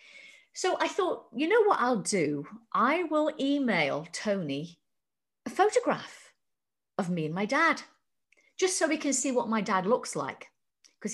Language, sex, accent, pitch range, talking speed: English, female, British, 185-275 Hz, 160 wpm